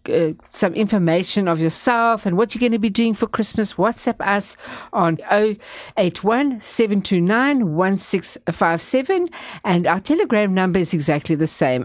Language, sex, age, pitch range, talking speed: English, female, 60-79, 165-220 Hz, 130 wpm